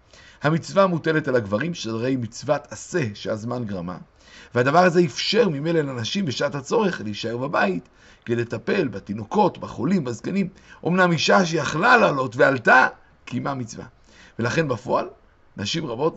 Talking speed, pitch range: 125 wpm, 115-170 Hz